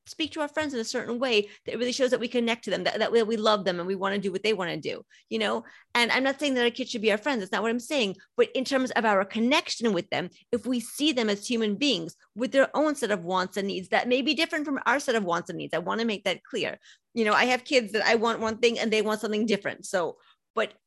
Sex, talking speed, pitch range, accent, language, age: female, 305 wpm, 210-265 Hz, American, English, 30-49